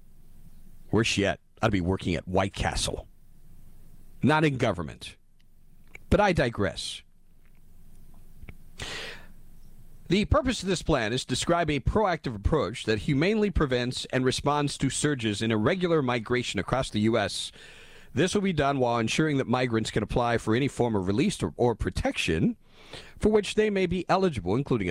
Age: 50-69